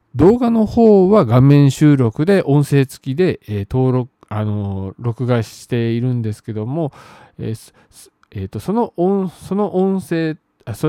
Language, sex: Japanese, male